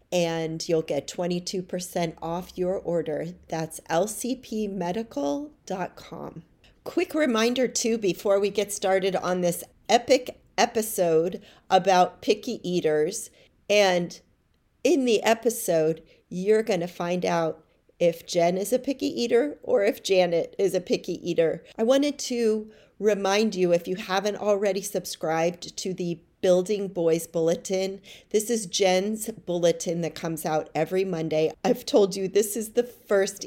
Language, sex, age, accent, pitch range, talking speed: English, female, 40-59, American, 170-210 Hz, 135 wpm